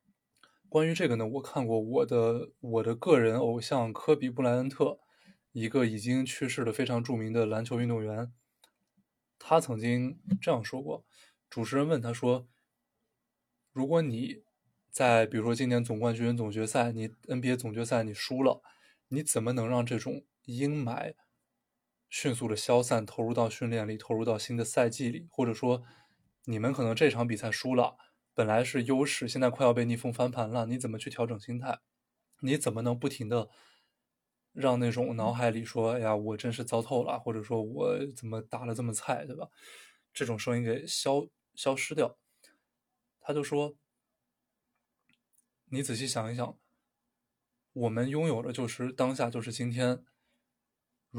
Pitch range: 115-130 Hz